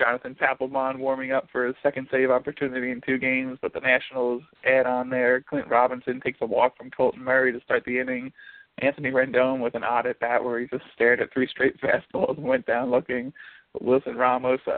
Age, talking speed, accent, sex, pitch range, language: 20-39, 205 wpm, American, male, 125-135 Hz, English